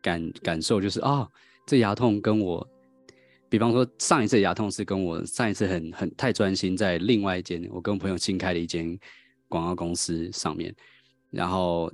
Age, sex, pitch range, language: 20-39, male, 90-125 Hz, Chinese